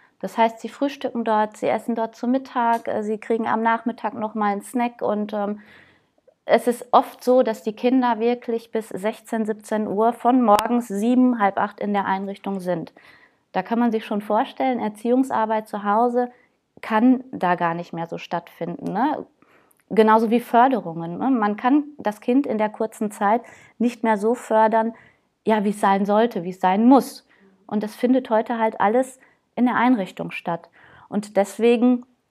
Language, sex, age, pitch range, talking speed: German, female, 20-39, 215-250 Hz, 175 wpm